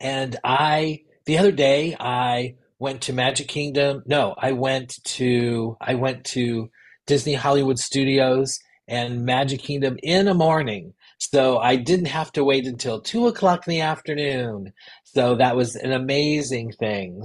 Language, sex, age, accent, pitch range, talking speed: English, male, 30-49, American, 125-160 Hz, 155 wpm